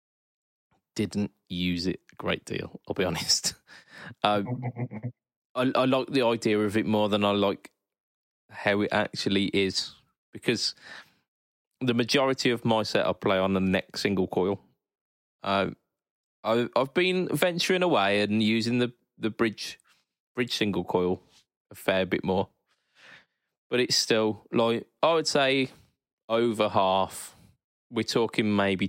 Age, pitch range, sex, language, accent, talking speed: 20-39, 100-120 Hz, male, English, British, 140 wpm